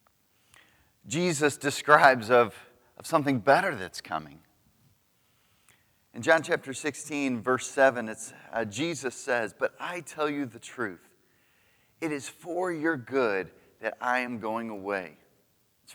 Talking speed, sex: 130 wpm, male